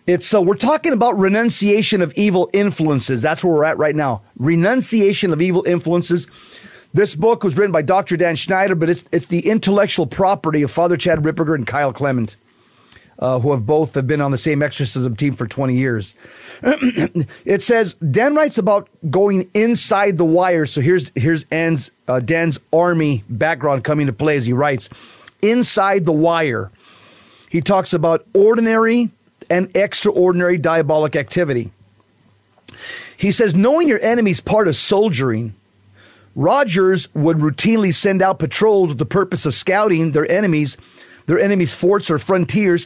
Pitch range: 150-200 Hz